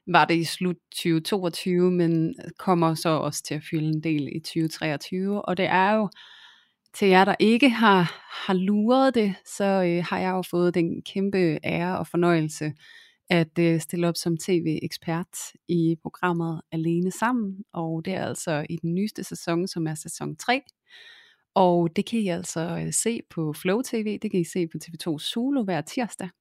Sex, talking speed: female, 175 wpm